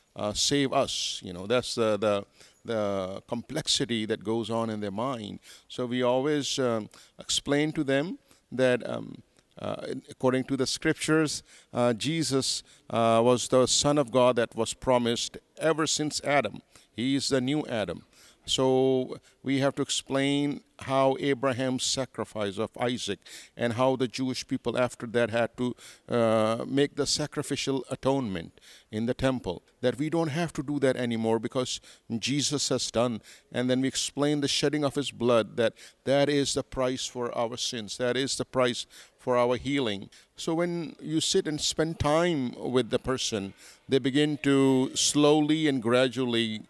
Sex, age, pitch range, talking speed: male, 50-69, 115-140 Hz, 165 wpm